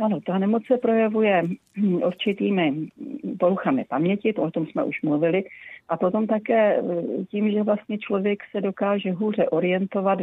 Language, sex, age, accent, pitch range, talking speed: Czech, female, 40-59, native, 160-195 Hz, 135 wpm